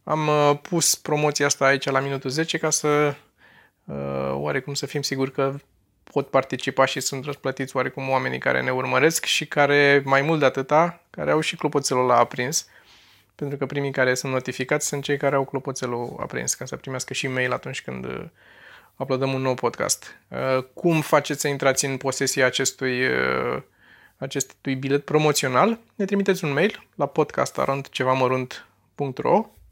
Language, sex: Romanian, male